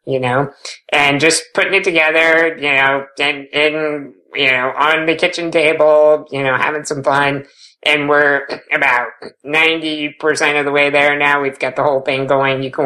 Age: 50-69